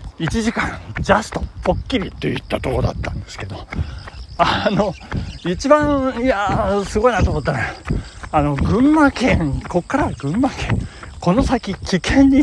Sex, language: male, Japanese